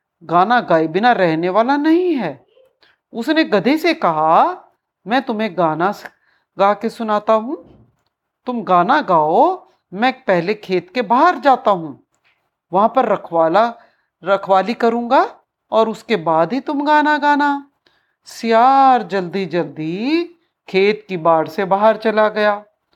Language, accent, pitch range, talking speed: Hindi, native, 180-285 Hz, 130 wpm